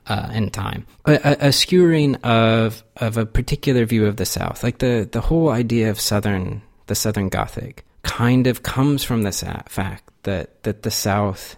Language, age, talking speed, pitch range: English, 30-49, 180 wpm, 100-120 Hz